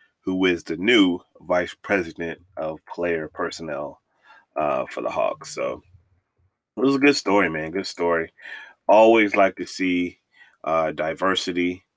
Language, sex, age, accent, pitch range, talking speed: English, male, 30-49, American, 85-110 Hz, 140 wpm